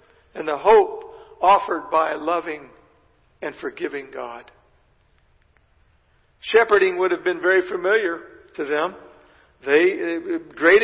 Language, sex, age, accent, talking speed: English, male, 60-79, American, 110 wpm